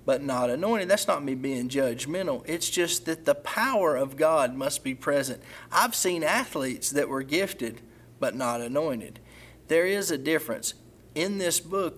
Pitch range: 130-165 Hz